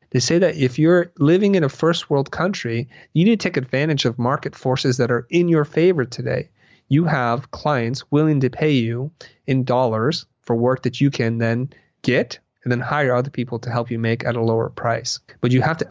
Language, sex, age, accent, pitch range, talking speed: English, male, 30-49, American, 120-150 Hz, 220 wpm